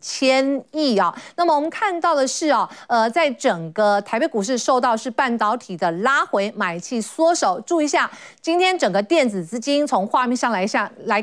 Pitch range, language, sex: 210-295 Hz, Chinese, female